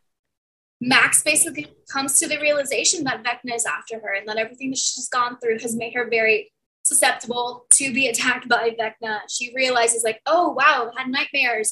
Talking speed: 185 wpm